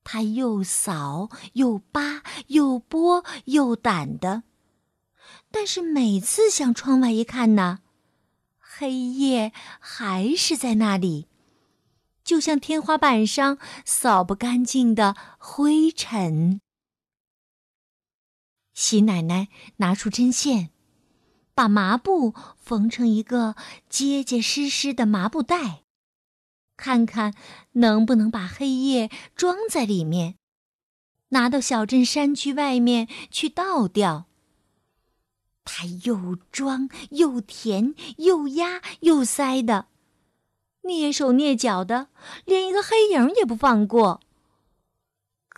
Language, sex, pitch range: Chinese, female, 210-280 Hz